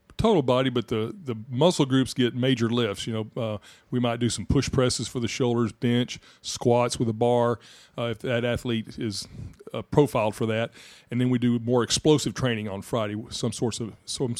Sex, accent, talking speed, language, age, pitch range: male, American, 210 wpm, English, 40-59, 115-135 Hz